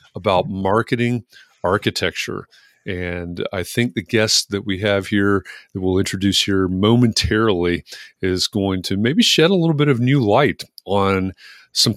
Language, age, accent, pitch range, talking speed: English, 30-49, American, 95-120 Hz, 150 wpm